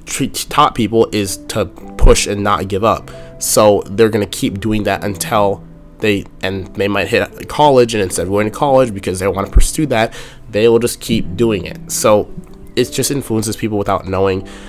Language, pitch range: English, 95-115 Hz